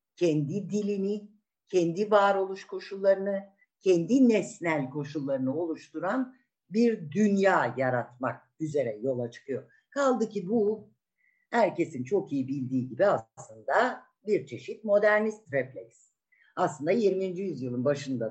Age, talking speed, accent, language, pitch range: 60-79, 105 wpm, native, Turkish, 140-215 Hz